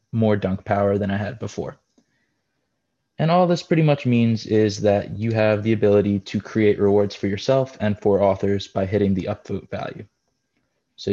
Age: 20-39